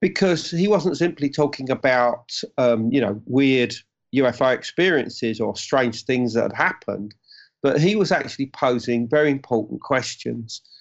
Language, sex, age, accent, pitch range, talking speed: English, male, 40-59, British, 120-150 Hz, 145 wpm